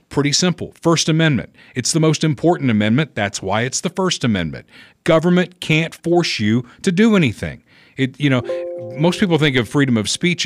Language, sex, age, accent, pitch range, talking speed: English, male, 50-69, American, 105-150 Hz, 180 wpm